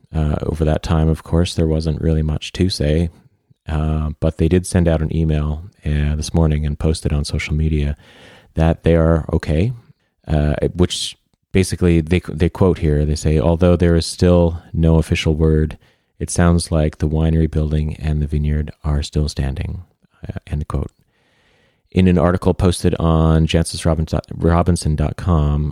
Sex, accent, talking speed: male, American, 165 wpm